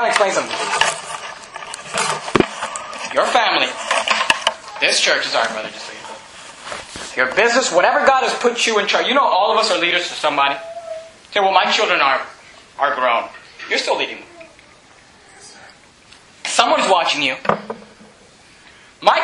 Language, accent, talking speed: English, American, 130 wpm